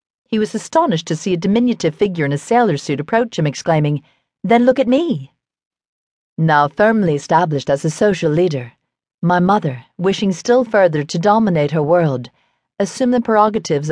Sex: female